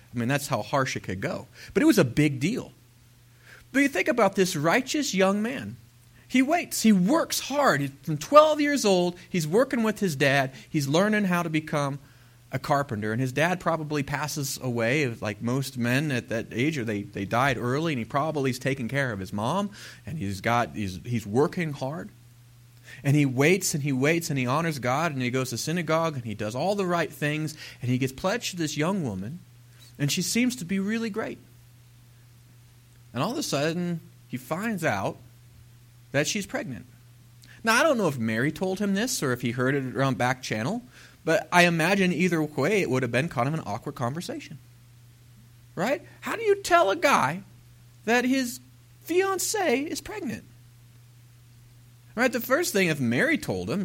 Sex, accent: male, American